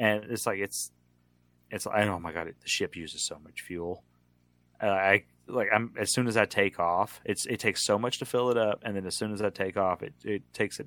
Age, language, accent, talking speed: 30-49, English, American, 255 wpm